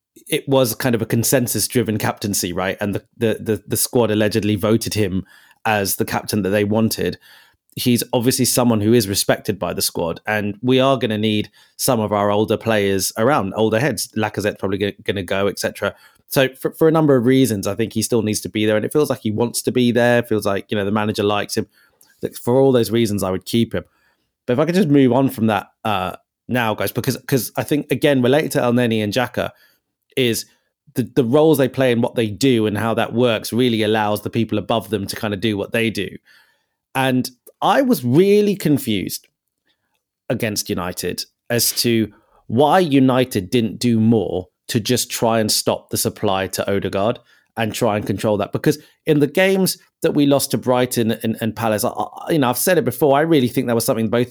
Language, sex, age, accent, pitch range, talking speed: English, male, 30-49, British, 105-130 Hz, 220 wpm